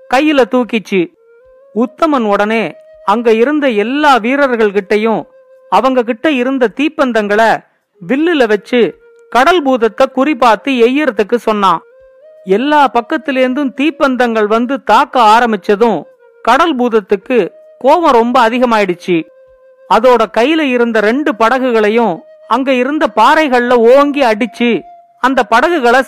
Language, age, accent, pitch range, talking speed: Tamil, 40-59, native, 225-295 Hz, 95 wpm